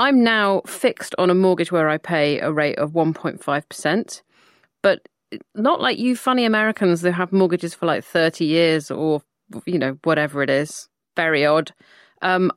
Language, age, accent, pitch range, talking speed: English, 30-49, British, 160-210 Hz, 165 wpm